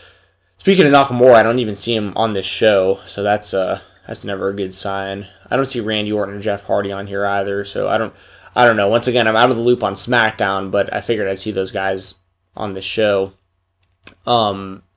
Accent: American